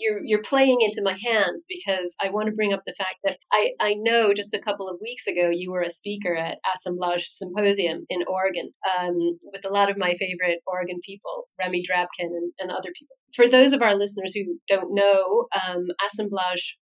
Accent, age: American, 30-49